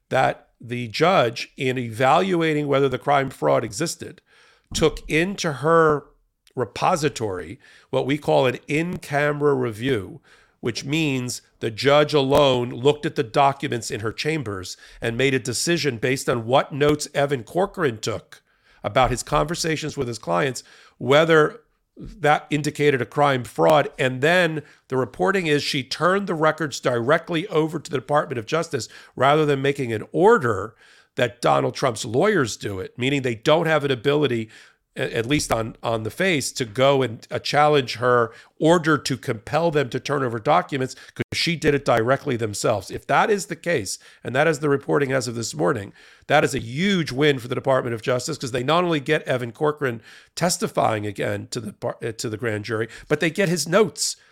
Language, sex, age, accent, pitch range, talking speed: English, male, 50-69, American, 125-155 Hz, 175 wpm